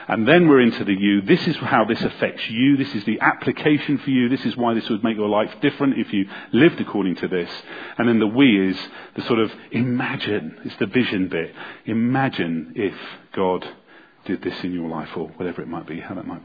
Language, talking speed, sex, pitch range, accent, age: English, 225 wpm, male, 105-150 Hz, British, 40-59